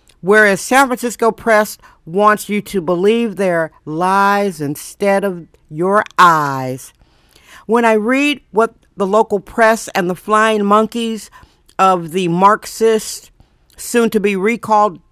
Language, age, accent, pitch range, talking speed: English, 50-69, American, 200-230 Hz, 125 wpm